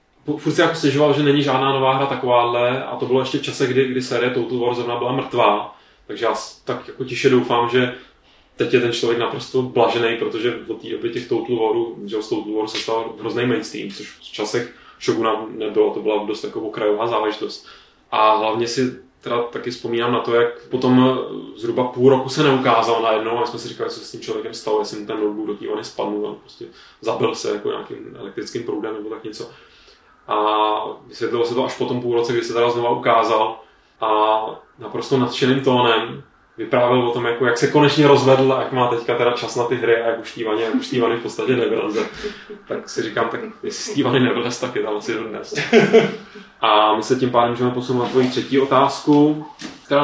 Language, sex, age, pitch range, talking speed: Czech, male, 20-39, 120-150 Hz, 205 wpm